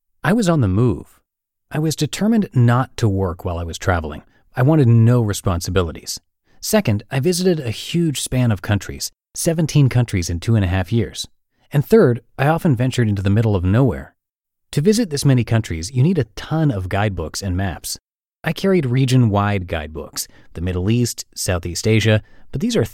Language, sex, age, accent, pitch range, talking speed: English, male, 30-49, American, 95-130 Hz, 185 wpm